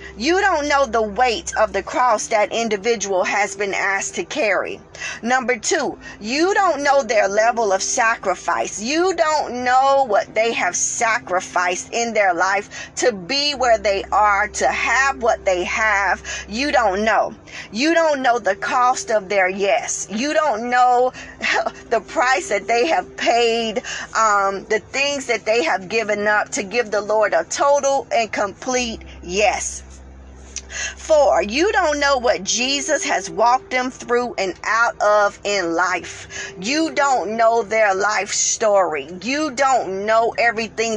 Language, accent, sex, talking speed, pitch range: English, American, female, 155 wpm, 200-280 Hz